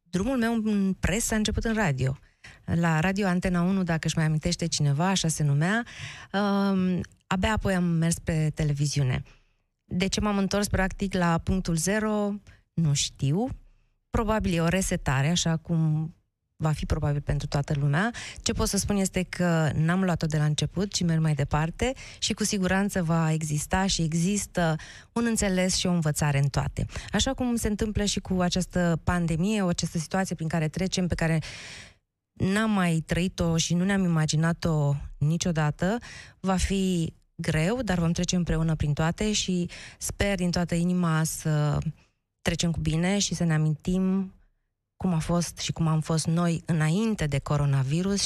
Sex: female